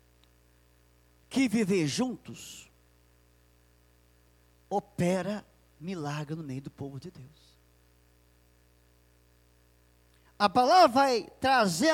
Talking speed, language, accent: 75 wpm, Portuguese, Brazilian